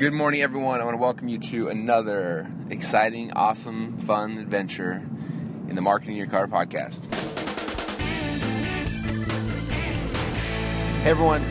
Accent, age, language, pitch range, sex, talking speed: American, 30-49, English, 110-140 Hz, male, 115 wpm